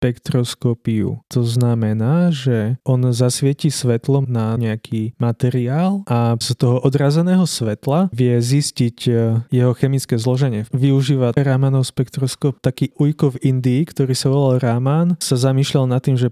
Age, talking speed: 20-39, 130 wpm